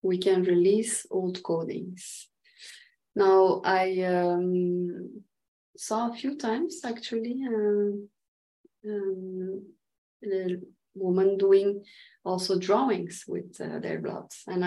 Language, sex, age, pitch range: English, female, 20-39, 180-220 Hz